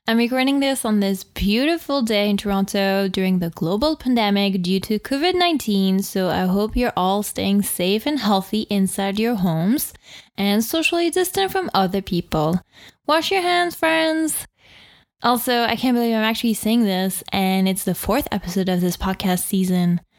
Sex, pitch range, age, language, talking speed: female, 190-235 Hz, 10-29, English, 165 wpm